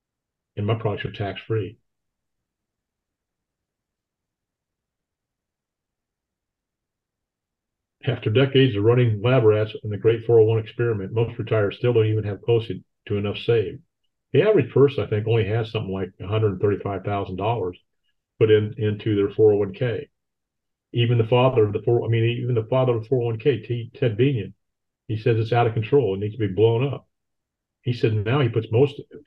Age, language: 50-69, English